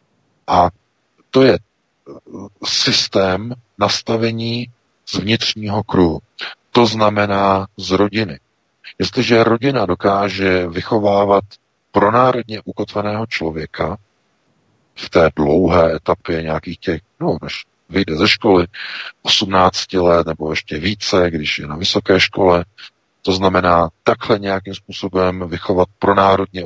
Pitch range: 90-115 Hz